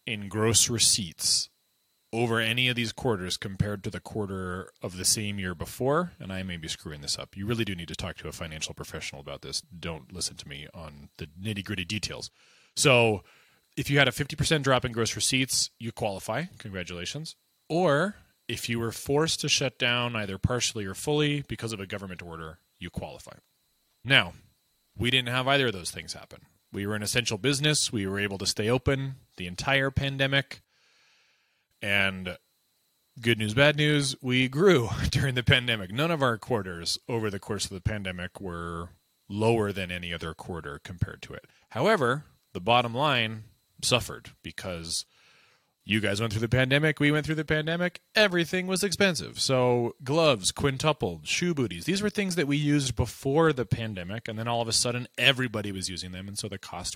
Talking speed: 185 wpm